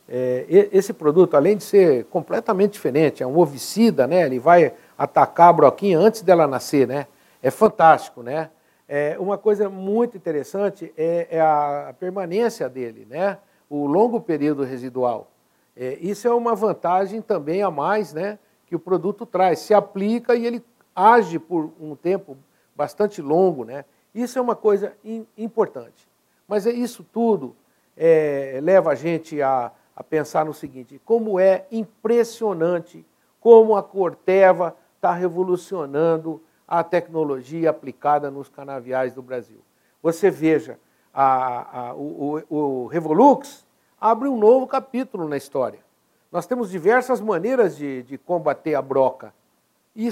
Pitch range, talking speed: 150-215 Hz, 140 wpm